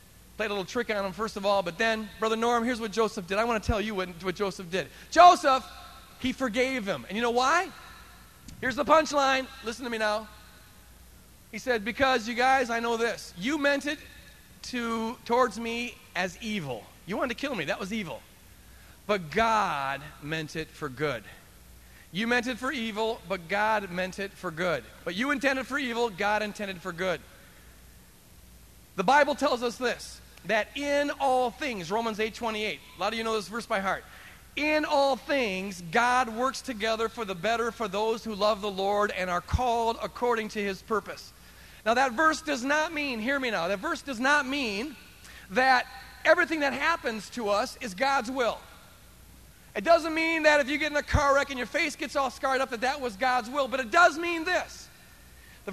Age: 40-59